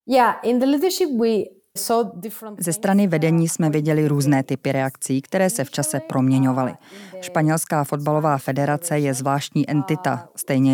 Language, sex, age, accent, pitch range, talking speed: Czech, female, 20-39, native, 140-175 Hz, 110 wpm